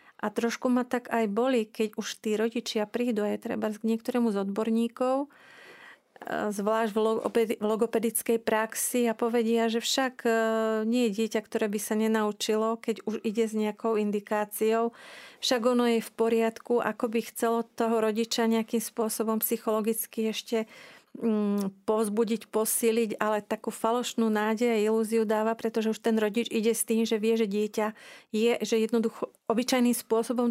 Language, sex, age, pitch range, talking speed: Slovak, female, 40-59, 215-230 Hz, 150 wpm